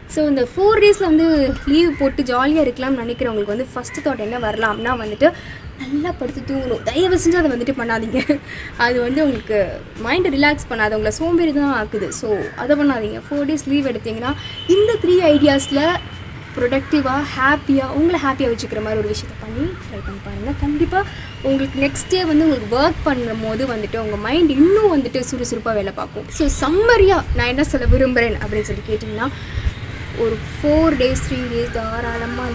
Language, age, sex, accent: Tamil, 20-39, female, native